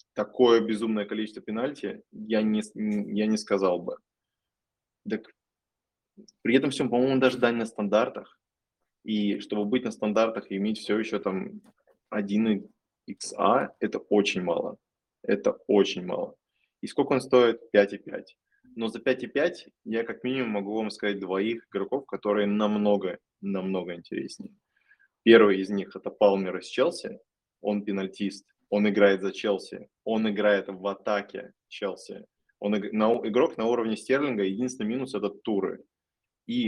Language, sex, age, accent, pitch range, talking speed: Russian, male, 20-39, native, 105-125 Hz, 150 wpm